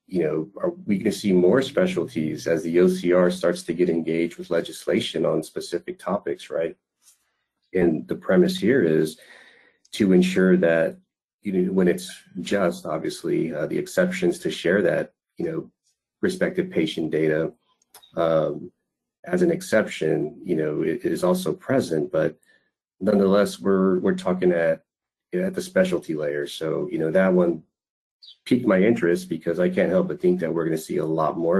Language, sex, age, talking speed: English, male, 40-59, 170 wpm